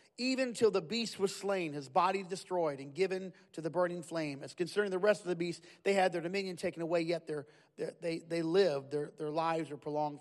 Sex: male